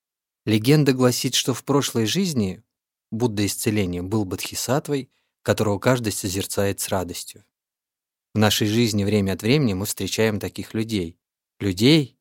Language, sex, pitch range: Russian, male, 95-115 Hz